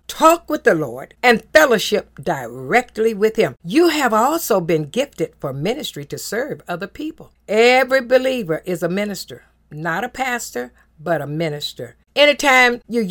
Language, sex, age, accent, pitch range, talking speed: English, female, 60-79, American, 170-260 Hz, 150 wpm